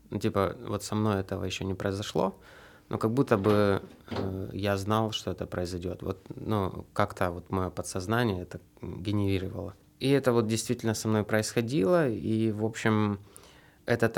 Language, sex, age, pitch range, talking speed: Russian, male, 20-39, 95-115 Hz, 160 wpm